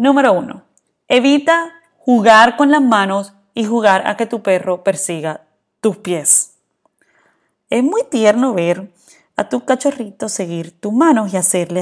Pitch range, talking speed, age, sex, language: 180-255 Hz, 140 wpm, 20-39, female, Spanish